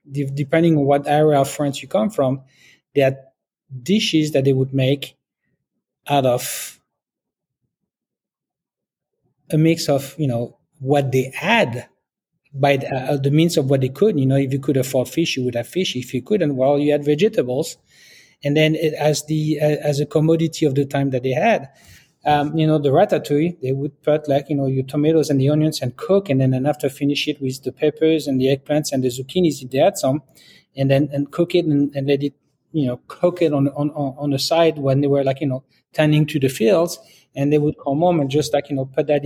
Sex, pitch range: male, 135-155 Hz